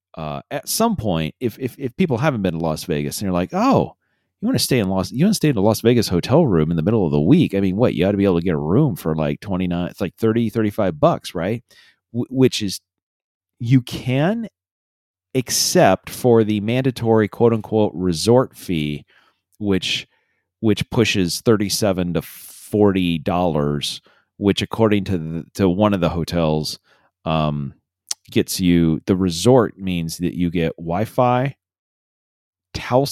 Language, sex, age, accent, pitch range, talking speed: English, male, 30-49, American, 85-115 Hz, 185 wpm